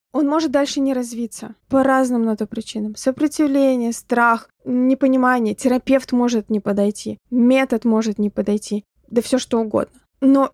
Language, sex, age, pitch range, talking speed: Russian, female, 20-39, 220-265 Hz, 140 wpm